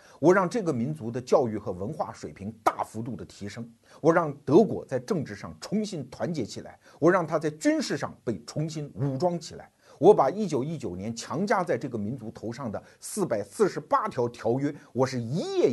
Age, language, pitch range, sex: 50-69, Chinese, 110-165 Hz, male